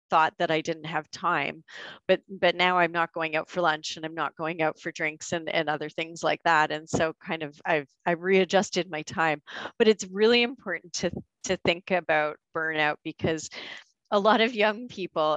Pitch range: 160-185 Hz